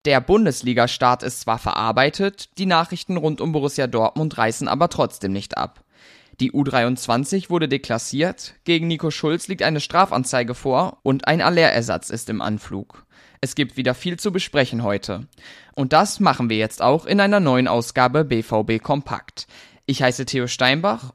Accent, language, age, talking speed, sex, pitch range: German, German, 20-39, 160 wpm, male, 125-160 Hz